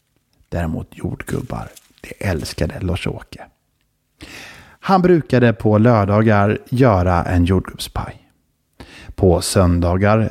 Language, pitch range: Swedish, 95-135 Hz